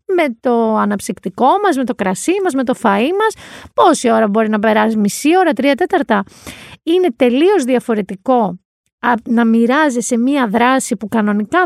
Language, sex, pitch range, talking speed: Greek, female, 220-310 Hz, 155 wpm